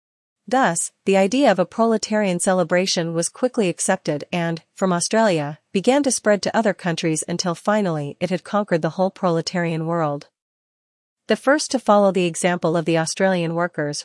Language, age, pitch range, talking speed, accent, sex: English, 40-59, 165-210 Hz, 160 wpm, American, female